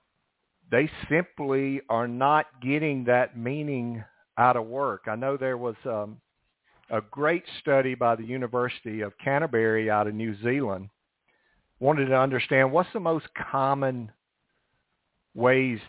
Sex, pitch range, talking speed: male, 115-135 Hz, 130 wpm